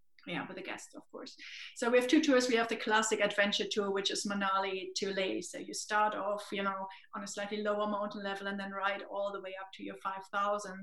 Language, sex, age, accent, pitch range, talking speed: English, female, 30-49, German, 195-220 Hz, 245 wpm